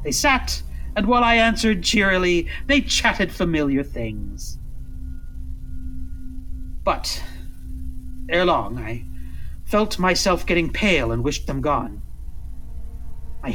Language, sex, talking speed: English, male, 105 wpm